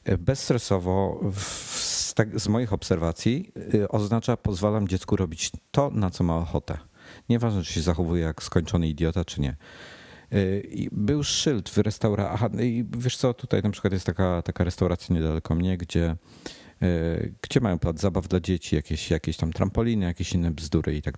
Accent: native